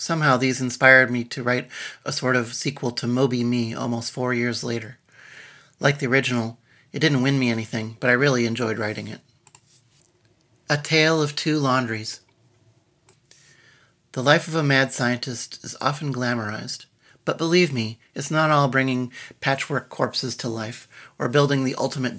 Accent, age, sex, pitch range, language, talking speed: American, 40-59, male, 120-135 Hz, English, 160 wpm